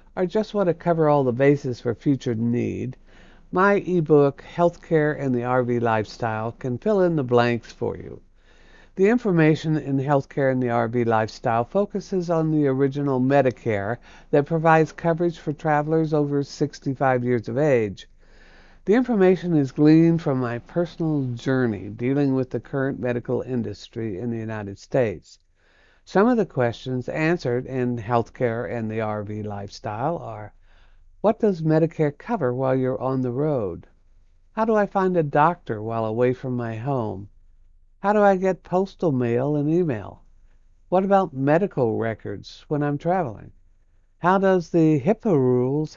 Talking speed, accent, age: 155 wpm, American, 60-79